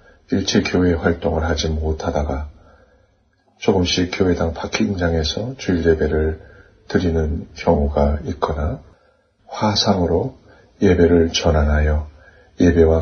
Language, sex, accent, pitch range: Korean, male, native, 75-90 Hz